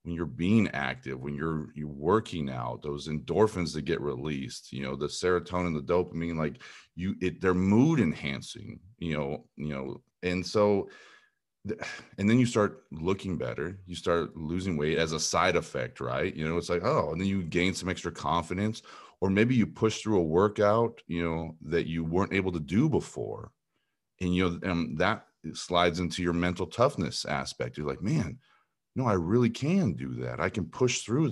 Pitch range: 80-100 Hz